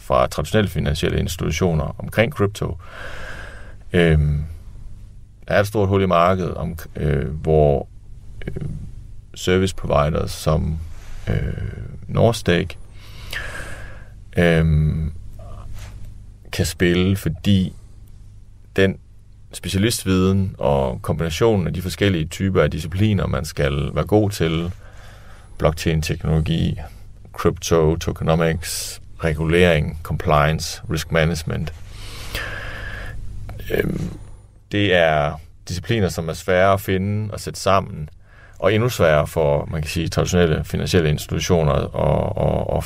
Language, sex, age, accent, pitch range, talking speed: Danish, male, 30-49, native, 80-100 Hz, 100 wpm